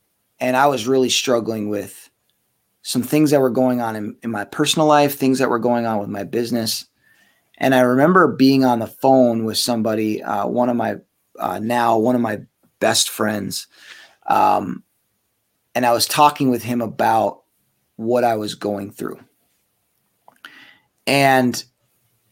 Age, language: 30-49, English